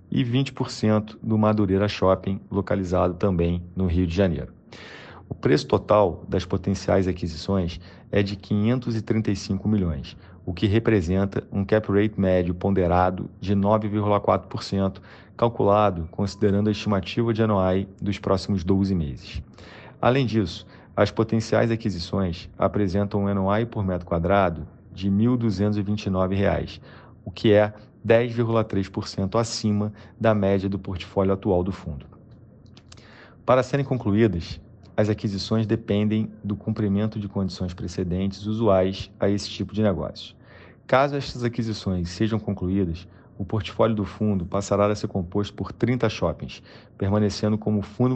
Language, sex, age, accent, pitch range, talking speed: Portuguese, male, 40-59, Brazilian, 95-110 Hz, 130 wpm